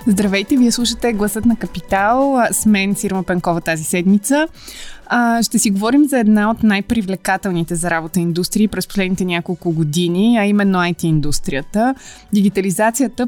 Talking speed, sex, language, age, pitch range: 135 wpm, female, English, 20-39, 175-215 Hz